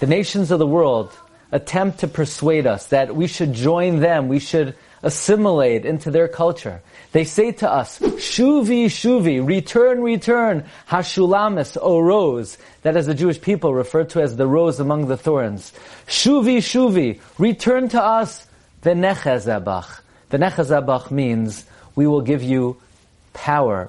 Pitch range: 130-200 Hz